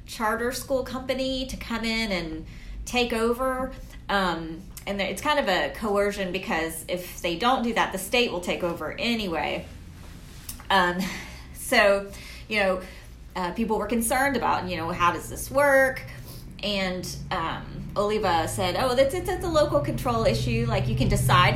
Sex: female